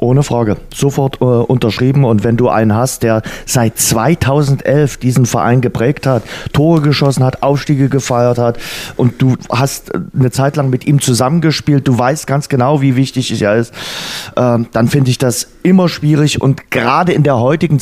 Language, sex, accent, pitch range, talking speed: German, male, German, 110-135 Hz, 175 wpm